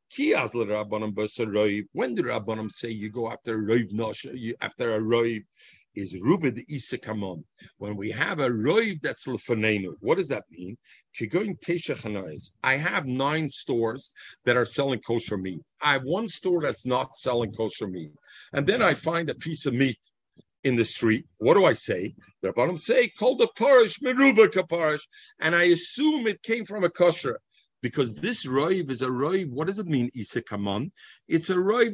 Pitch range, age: 130-205 Hz, 50-69